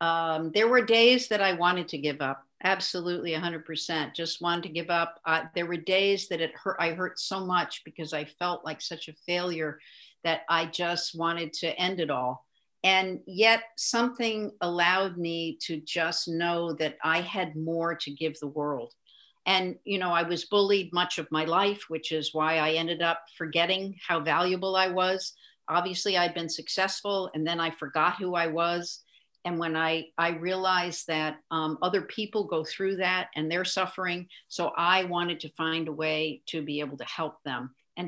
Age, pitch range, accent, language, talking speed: 50-69, 160-190 Hz, American, English, 190 wpm